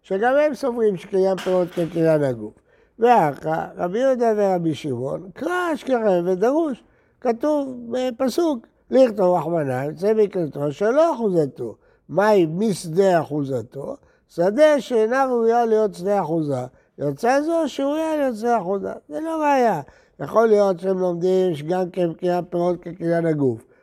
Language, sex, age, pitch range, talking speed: Hebrew, male, 60-79, 165-235 Hz, 130 wpm